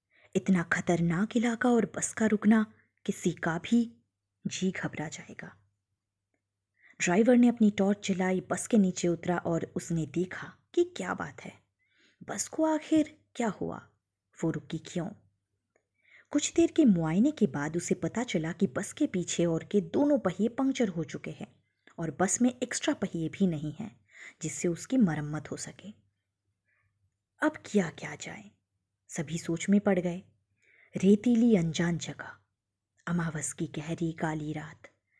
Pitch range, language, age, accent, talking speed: 145-235 Hz, Hindi, 20-39, native, 150 wpm